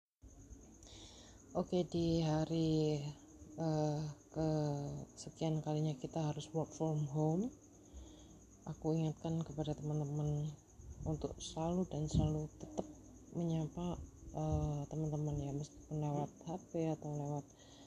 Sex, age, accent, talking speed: female, 20-39, native, 105 wpm